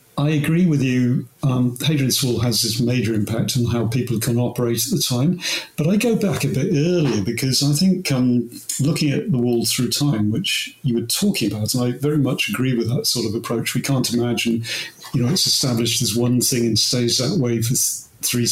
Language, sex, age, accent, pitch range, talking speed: English, male, 50-69, British, 120-145 Hz, 215 wpm